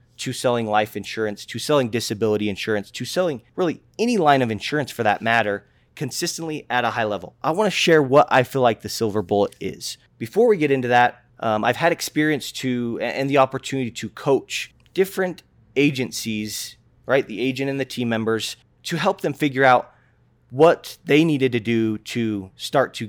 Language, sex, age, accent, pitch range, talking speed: English, male, 20-39, American, 110-140 Hz, 185 wpm